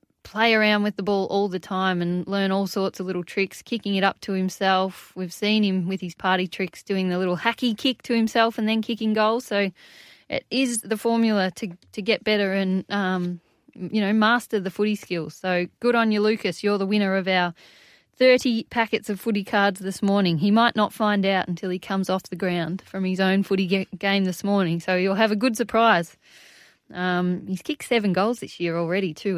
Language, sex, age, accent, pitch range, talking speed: English, female, 20-39, Australian, 185-225 Hz, 215 wpm